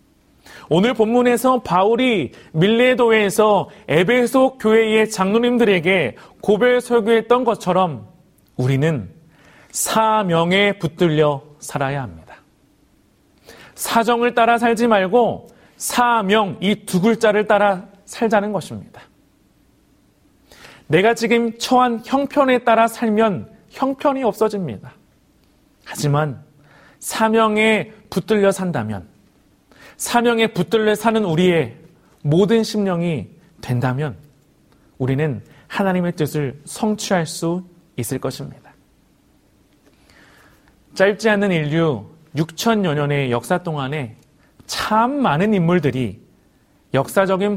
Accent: native